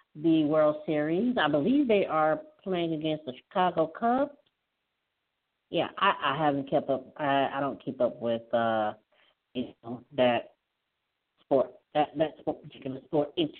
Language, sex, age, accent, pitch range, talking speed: English, female, 40-59, American, 140-190 Hz, 150 wpm